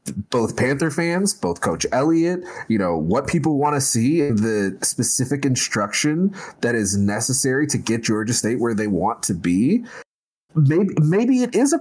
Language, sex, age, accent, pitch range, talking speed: English, male, 30-49, American, 105-165 Hz, 175 wpm